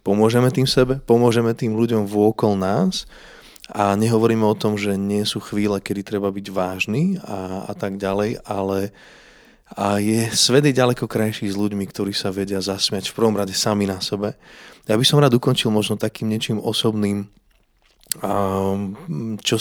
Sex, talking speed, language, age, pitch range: male, 160 wpm, Slovak, 20-39, 100-110 Hz